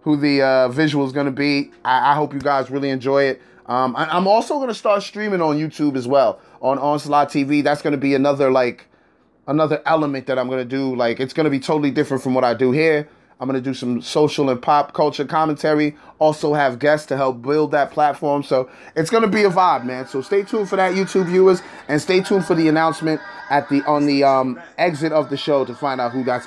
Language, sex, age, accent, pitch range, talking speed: English, male, 20-39, American, 140-170 Hz, 230 wpm